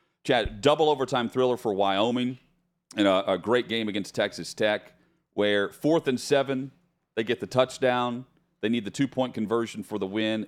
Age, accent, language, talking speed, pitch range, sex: 40-59, American, English, 170 wpm, 110-150 Hz, male